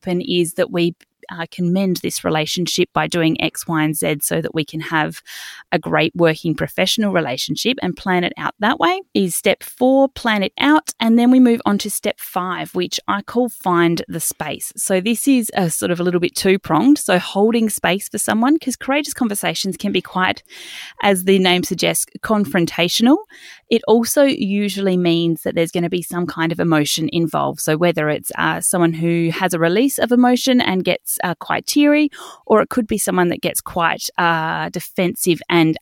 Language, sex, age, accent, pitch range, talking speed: English, female, 30-49, Australian, 165-220 Hz, 195 wpm